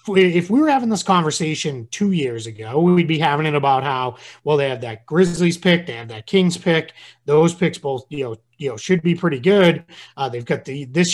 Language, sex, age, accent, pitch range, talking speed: English, male, 30-49, American, 135-175 Hz, 225 wpm